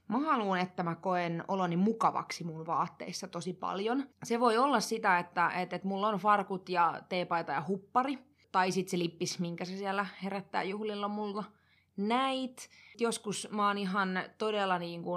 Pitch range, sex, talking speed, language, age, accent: 180-210 Hz, female, 160 wpm, Finnish, 20-39, native